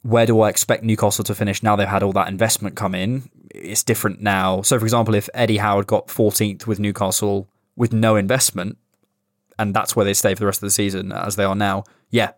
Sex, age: male, 20-39